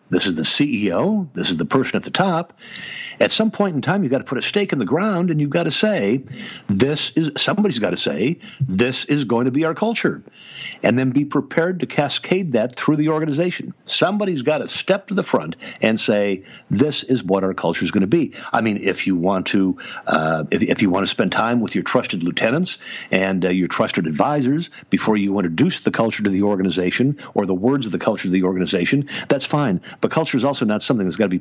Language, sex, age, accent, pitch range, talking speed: English, male, 60-79, American, 100-155 Hz, 235 wpm